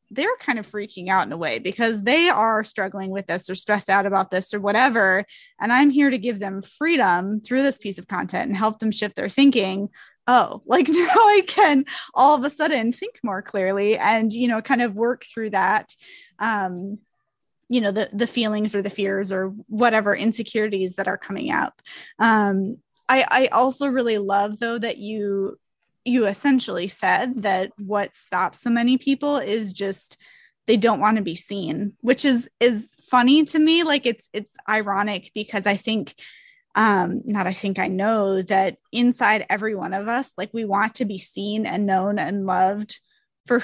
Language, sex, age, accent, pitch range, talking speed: English, female, 20-39, American, 200-260 Hz, 190 wpm